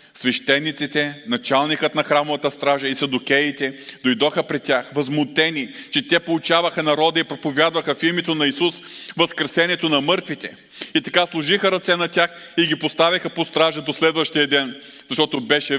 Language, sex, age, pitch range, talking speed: Bulgarian, male, 40-59, 135-165 Hz, 150 wpm